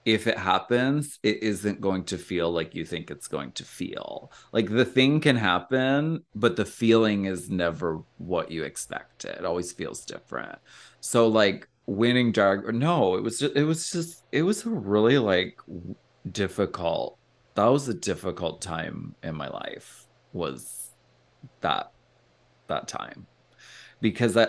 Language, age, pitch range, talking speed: English, 30-49, 95-125 Hz, 150 wpm